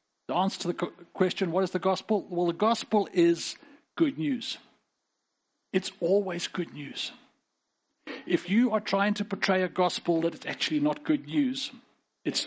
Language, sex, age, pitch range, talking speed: English, male, 50-69, 160-240 Hz, 165 wpm